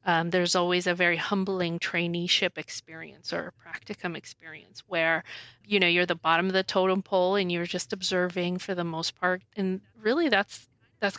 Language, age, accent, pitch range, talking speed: English, 40-59, American, 170-195 Hz, 180 wpm